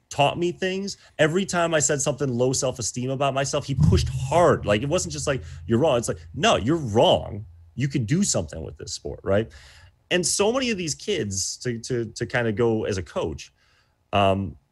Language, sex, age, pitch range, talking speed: English, male, 30-49, 95-140 Hz, 210 wpm